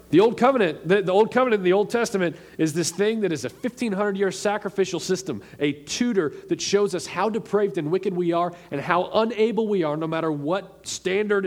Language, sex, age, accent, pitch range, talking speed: English, male, 40-59, American, 160-205 Hz, 210 wpm